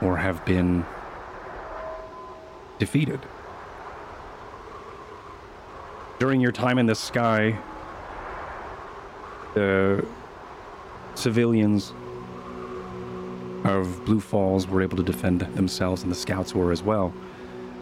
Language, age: English, 30-49